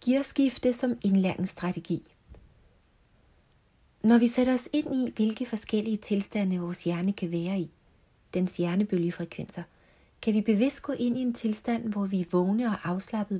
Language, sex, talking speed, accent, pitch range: Danish, female, 150 wpm, native, 180-225 Hz